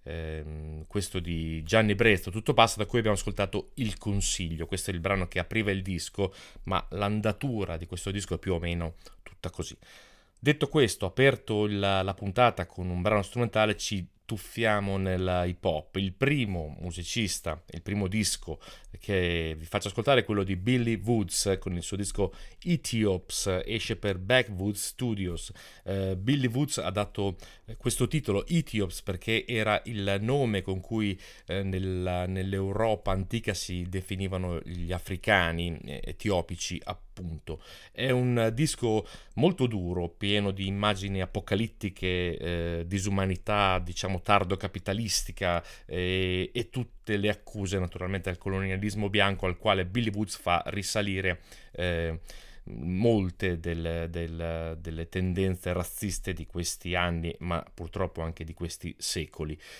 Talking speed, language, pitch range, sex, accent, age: 140 wpm, Italian, 90-110 Hz, male, native, 30-49